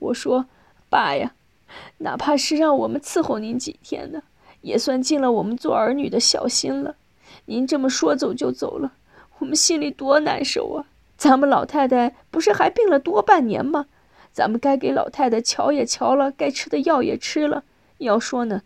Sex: female